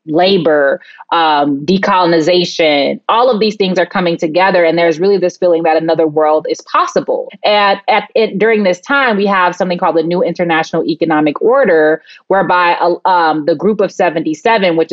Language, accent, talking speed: English, American, 175 wpm